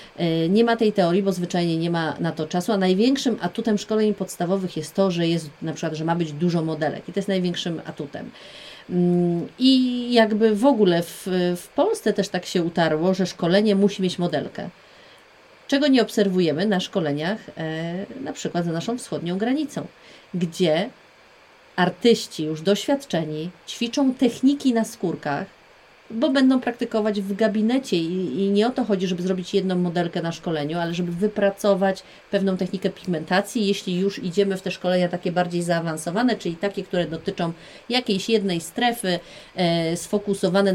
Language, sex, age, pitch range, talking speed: Polish, female, 30-49, 175-220 Hz, 155 wpm